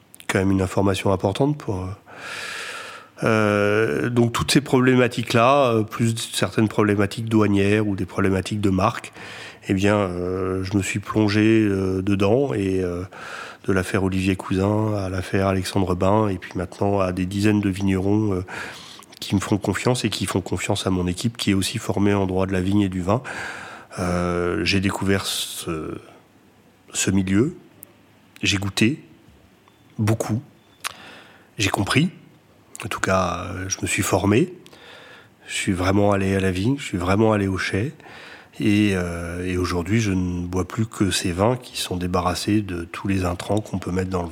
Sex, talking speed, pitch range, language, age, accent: male, 170 wpm, 95-110 Hz, French, 30-49, French